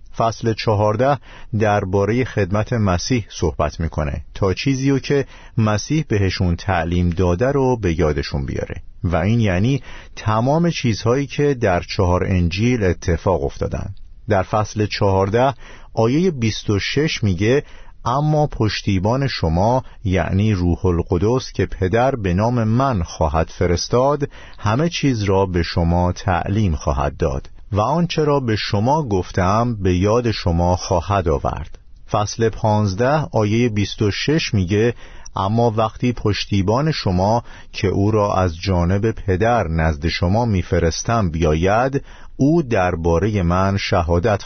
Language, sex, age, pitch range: Persian, male, 50-69, 90-120 Hz